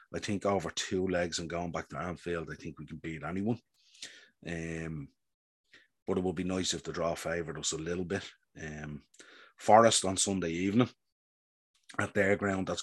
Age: 30-49